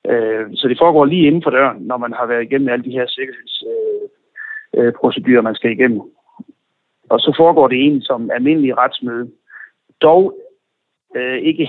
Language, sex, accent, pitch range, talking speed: Danish, male, native, 125-155 Hz, 150 wpm